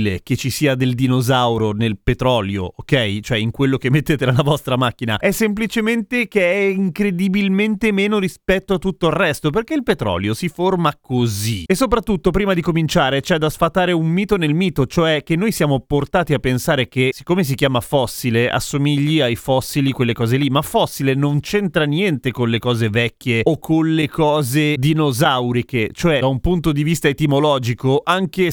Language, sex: Italian, male